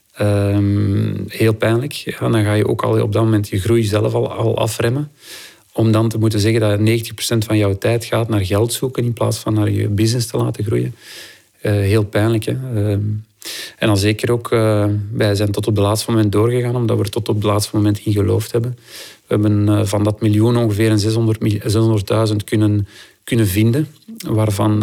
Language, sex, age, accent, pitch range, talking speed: Dutch, male, 40-59, Dutch, 105-115 Hz, 210 wpm